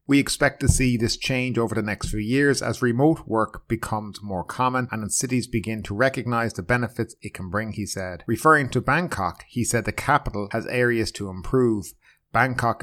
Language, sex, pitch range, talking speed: English, male, 105-130 Hz, 190 wpm